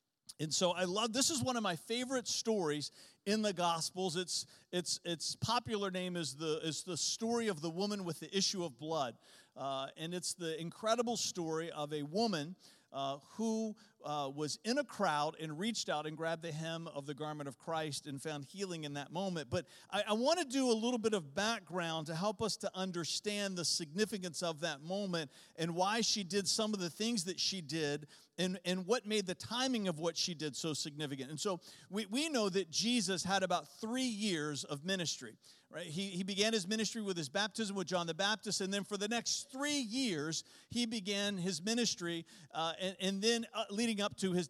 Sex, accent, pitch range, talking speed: male, American, 165-220 Hz, 210 wpm